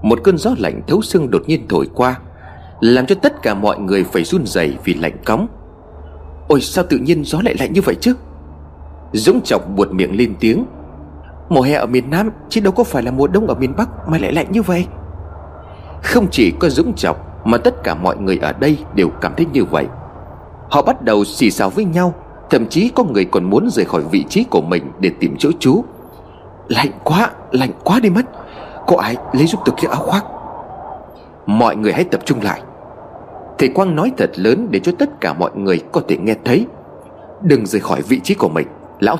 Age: 30-49